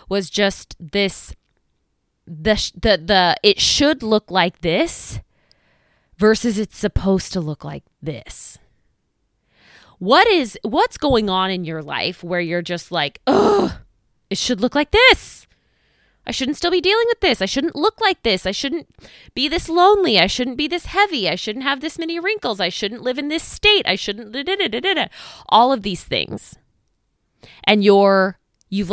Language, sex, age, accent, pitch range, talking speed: English, female, 20-39, American, 180-285 Hz, 165 wpm